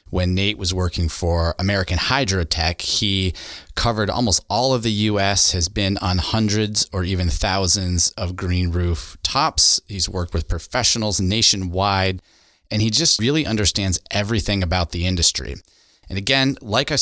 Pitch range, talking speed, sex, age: 90-110 Hz, 150 wpm, male, 30-49